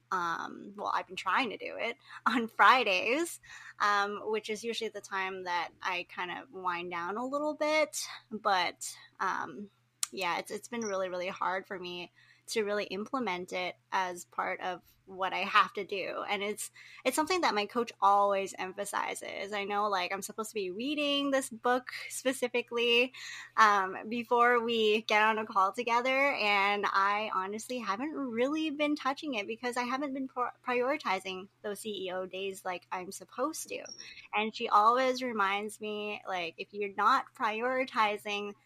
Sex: female